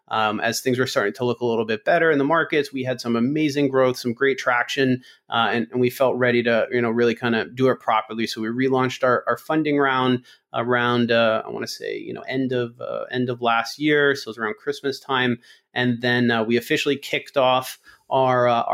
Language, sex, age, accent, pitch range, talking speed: English, male, 30-49, American, 120-130 Hz, 235 wpm